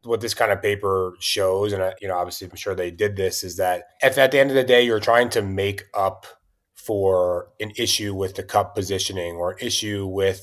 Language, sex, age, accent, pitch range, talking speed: English, male, 20-39, American, 90-105 Hz, 225 wpm